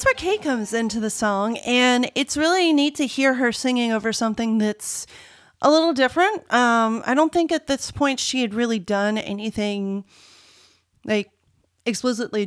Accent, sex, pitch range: American, female, 200-240 Hz